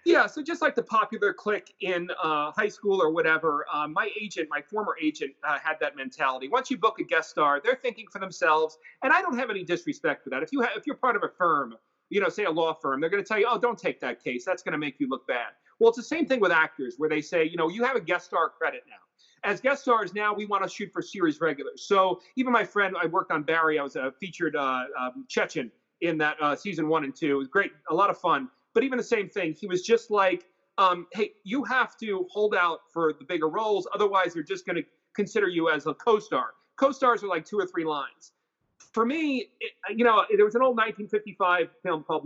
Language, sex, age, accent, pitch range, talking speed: English, male, 30-49, American, 165-245 Hz, 260 wpm